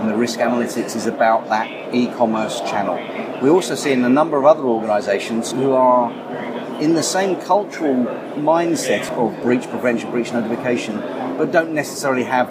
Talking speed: 165 wpm